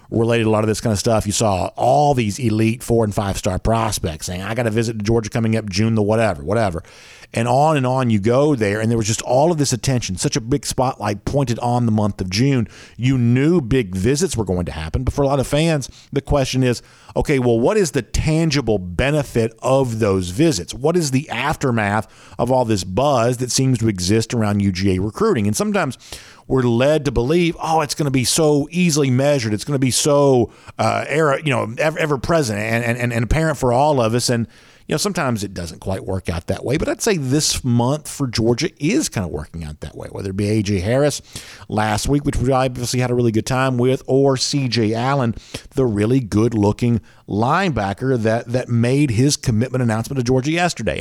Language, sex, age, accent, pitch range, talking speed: English, male, 50-69, American, 110-140 Hz, 225 wpm